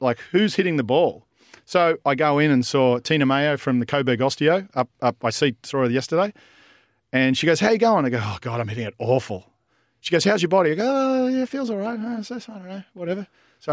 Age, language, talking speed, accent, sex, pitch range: 40-59, English, 255 wpm, Australian, male, 125-155 Hz